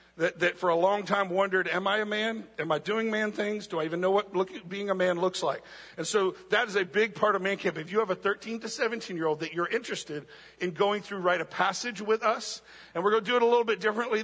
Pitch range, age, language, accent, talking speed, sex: 170-210 Hz, 50-69, English, American, 280 wpm, male